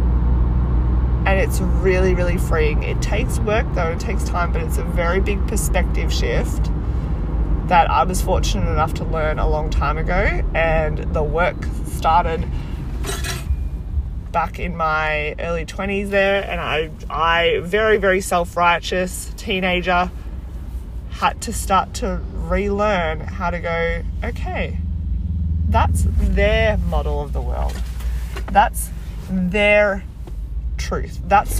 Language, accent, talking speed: English, Australian, 125 wpm